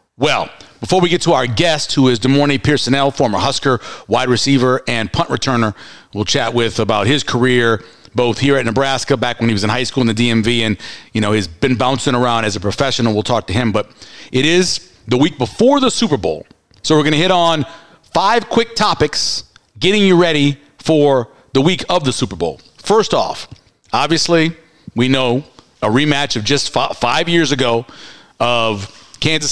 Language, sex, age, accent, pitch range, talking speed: English, male, 50-69, American, 120-160 Hz, 190 wpm